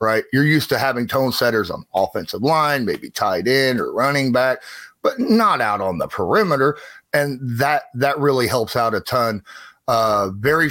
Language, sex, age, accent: English, male, 30-49, American